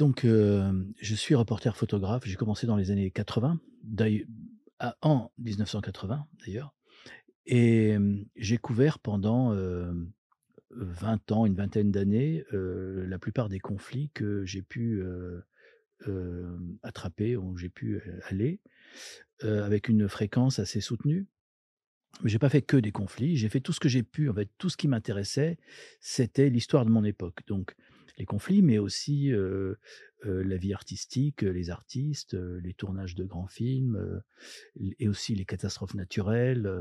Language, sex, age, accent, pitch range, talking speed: French, male, 50-69, French, 95-130 Hz, 160 wpm